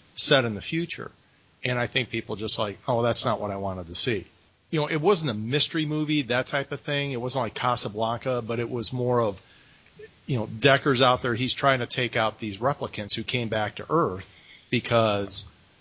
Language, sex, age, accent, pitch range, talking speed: English, male, 40-59, American, 105-135 Hz, 215 wpm